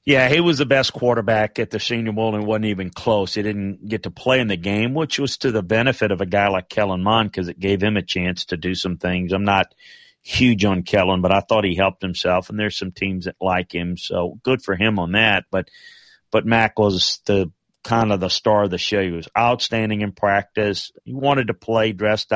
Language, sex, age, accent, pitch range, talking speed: English, male, 40-59, American, 95-115 Hz, 240 wpm